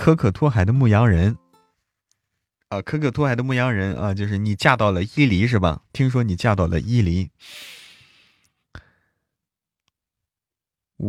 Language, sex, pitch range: Chinese, male, 90-120 Hz